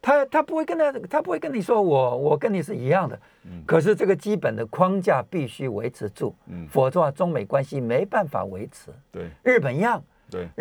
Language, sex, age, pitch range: Chinese, male, 50-69, 150-235 Hz